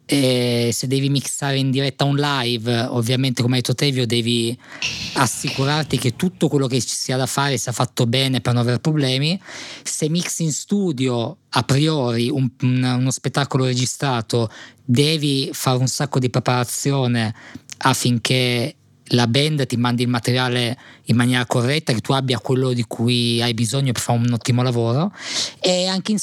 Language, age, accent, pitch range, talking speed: Italian, 20-39, native, 125-150 Hz, 165 wpm